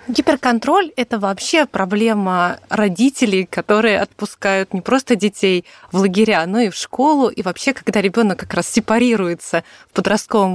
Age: 30-49